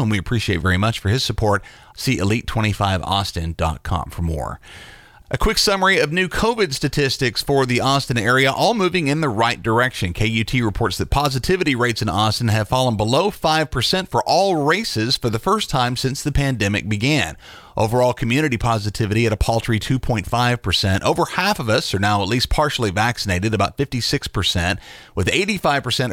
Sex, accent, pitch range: male, American, 105-140 Hz